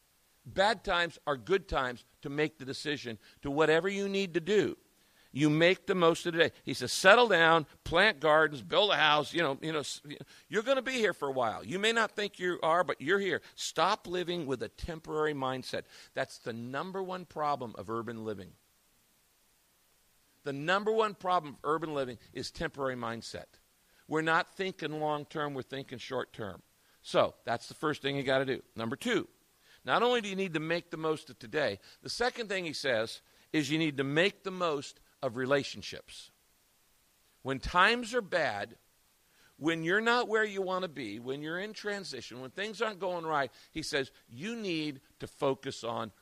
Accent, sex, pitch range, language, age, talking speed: American, male, 130-190 Hz, English, 50-69, 190 wpm